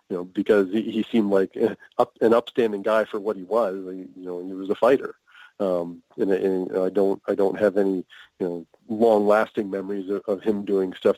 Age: 40-59